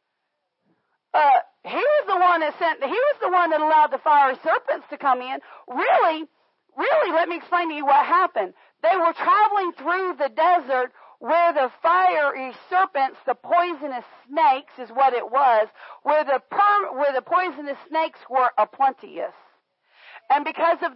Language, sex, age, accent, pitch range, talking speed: English, female, 40-59, American, 275-355 Hz, 165 wpm